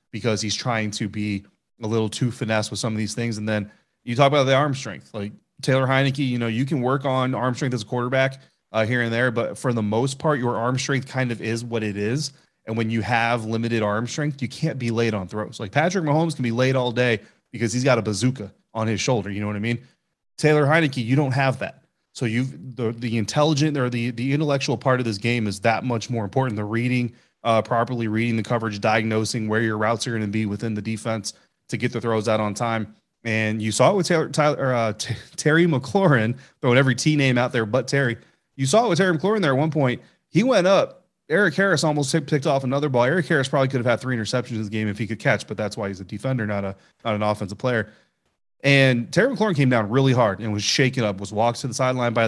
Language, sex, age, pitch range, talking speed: English, male, 30-49, 110-135 Hz, 250 wpm